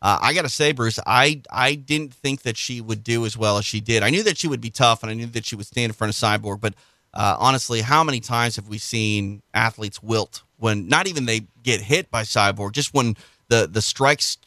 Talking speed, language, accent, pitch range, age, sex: 250 wpm, English, American, 110-135 Hz, 30-49, male